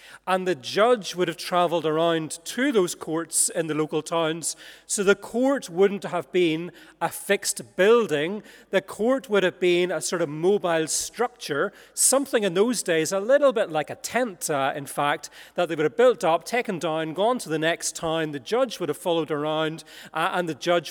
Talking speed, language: 200 wpm, English